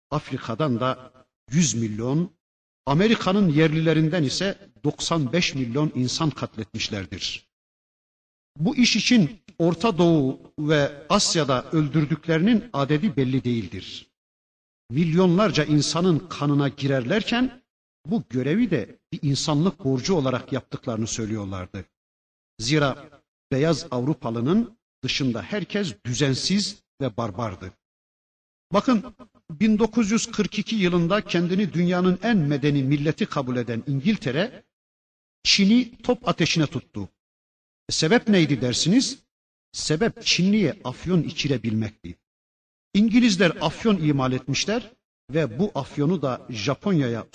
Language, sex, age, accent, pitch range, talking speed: Turkish, male, 60-79, native, 120-185 Hz, 95 wpm